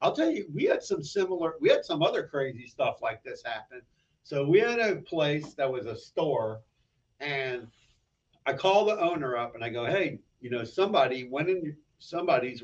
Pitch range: 115-145 Hz